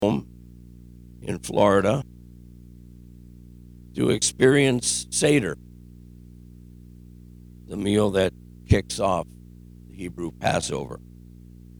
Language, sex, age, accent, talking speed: English, male, 60-79, American, 65 wpm